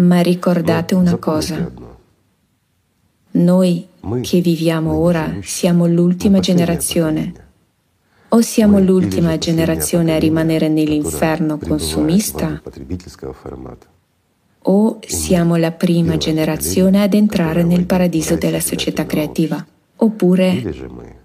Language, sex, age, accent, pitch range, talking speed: Italian, female, 20-39, native, 160-185 Hz, 90 wpm